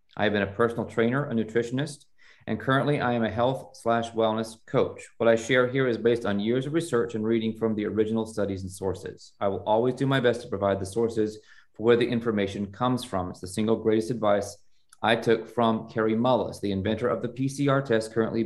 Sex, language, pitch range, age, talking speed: male, English, 110-140 Hz, 30-49, 220 wpm